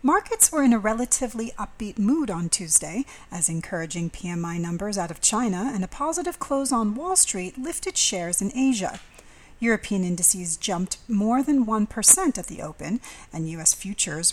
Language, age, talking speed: English, 40-59, 175 wpm